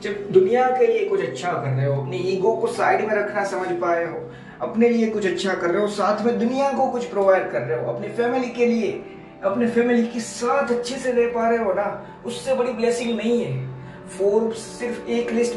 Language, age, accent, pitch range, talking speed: Hindi, 20-39, native, 175-245 Hz, 75 wpm